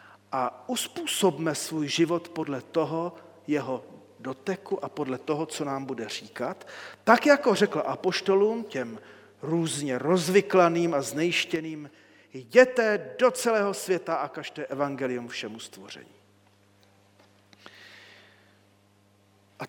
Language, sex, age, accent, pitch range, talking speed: Czech, male, 40-59, native, 125-185 Hz, 105 wpm